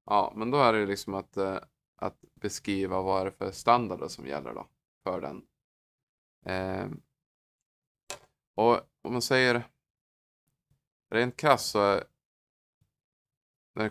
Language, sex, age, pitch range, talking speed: Swedish, male, 20-39, 95-115 Hz, 120 wpm